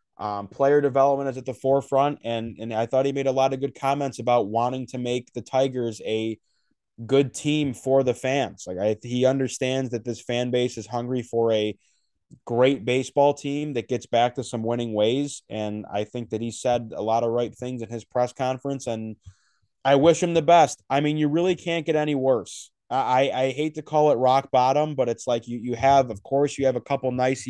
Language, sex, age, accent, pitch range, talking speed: English, male, 20-39, American, 115-135 Hz, 225 wpm